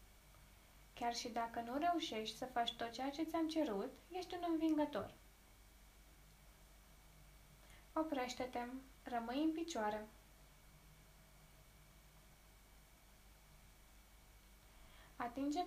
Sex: female